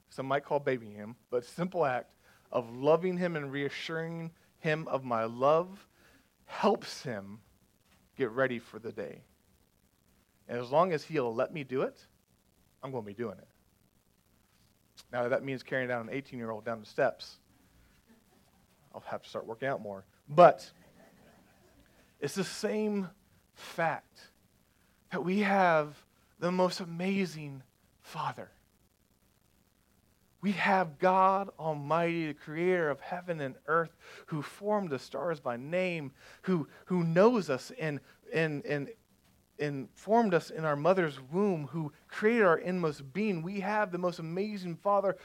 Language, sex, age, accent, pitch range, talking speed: English, male, 40-59, American, 135-190 Hz, 145 wpm